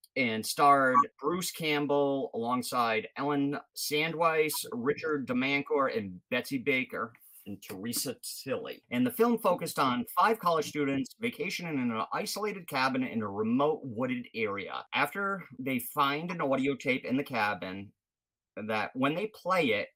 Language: English